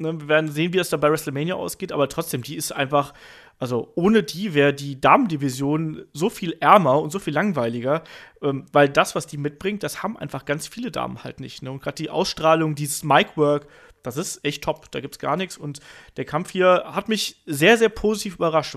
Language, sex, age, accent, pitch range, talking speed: German, male, 30-49, German, 145-190 Hz, 215 wpm